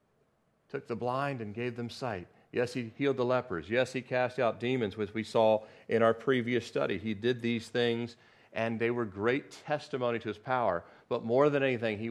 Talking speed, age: 200 wpm, 40-59